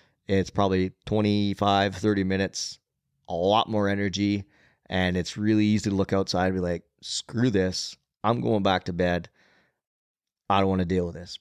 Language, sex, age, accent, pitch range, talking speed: English, male, 30-49, American, 95-105 Hz, 175 wpm